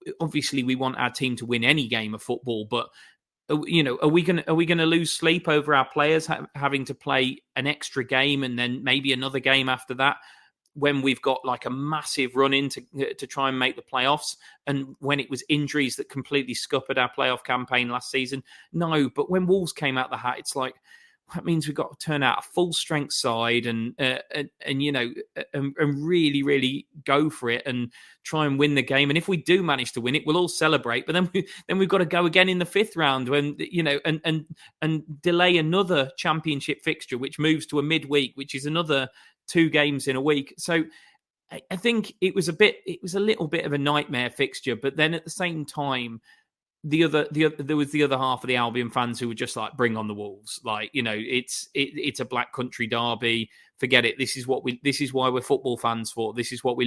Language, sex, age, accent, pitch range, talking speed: English, male, 30-49, British, 125-155 Hz, 230 wpm